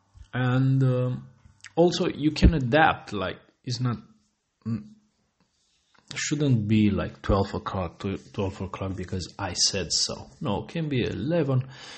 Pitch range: 95-125 Hz